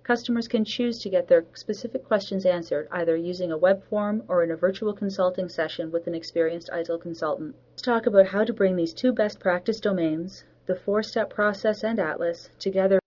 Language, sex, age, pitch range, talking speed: English, female, 40-59, 170-205 Hz, 195 wpm